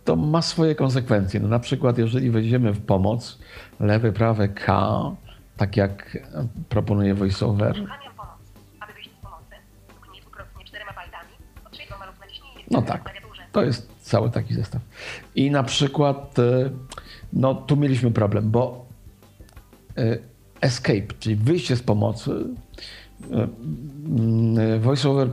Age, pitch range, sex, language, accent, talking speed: 50-69, 105-130 Hz, male, Polish, native, 90 wpm